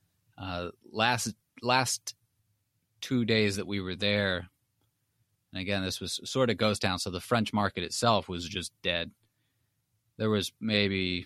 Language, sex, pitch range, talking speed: English, male, 90-110 Hz, 150 wpm